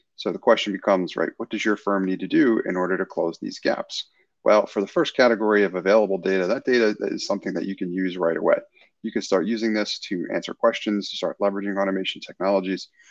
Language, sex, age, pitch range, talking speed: English, male, 30-49, 95-115 Hz, 225 wpm